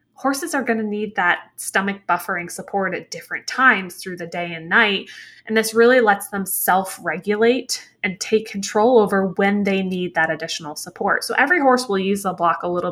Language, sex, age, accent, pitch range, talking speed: English, female, 20-39, American, 180-230 Hz, 195 wpm